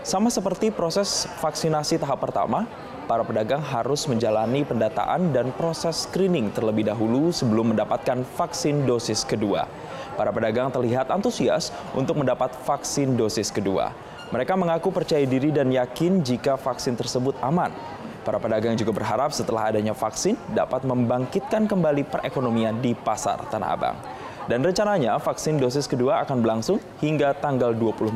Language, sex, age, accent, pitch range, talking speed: Indonesian, male, 20-39, native, 115-165 Hz, 140 wpm